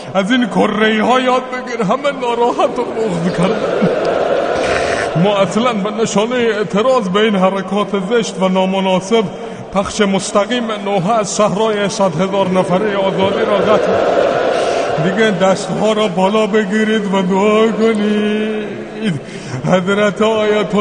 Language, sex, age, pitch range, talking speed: English, male, 20-39, 180-215 Hz, 125 wpm